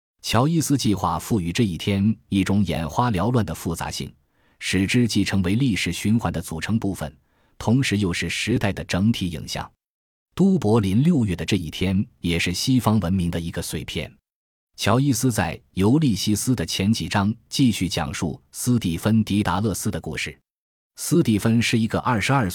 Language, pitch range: Chinese, 85-115 Hz